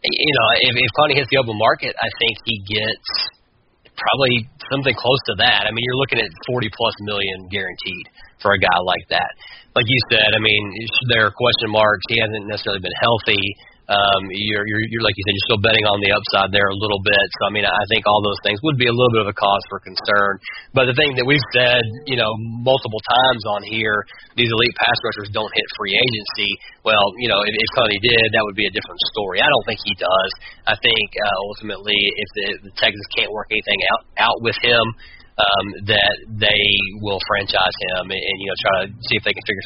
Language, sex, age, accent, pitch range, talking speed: English, male, 30-49, American, 100-115 Hz, 225 wpm